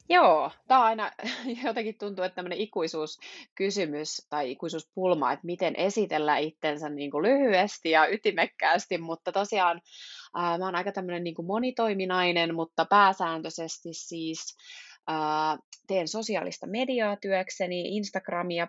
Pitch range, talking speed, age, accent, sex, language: 160-200 Hz, 120 wpm, 20-39, native, female, Finnish